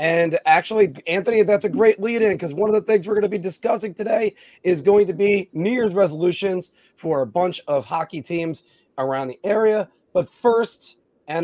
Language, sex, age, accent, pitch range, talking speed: English, male, 30-49, American, 145-205 Hz, 195 wpm